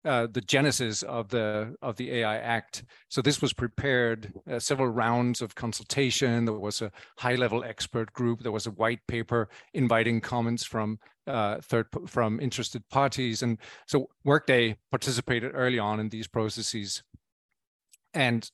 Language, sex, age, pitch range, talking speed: English, male, 40-59, 115-130 Hz, 155 wpm